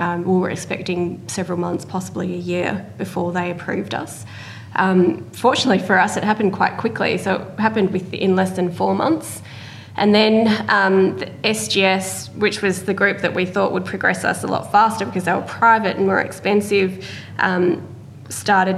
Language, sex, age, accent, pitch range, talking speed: English, female, 20-39, Australian, 175-195 Hz, 180 wpm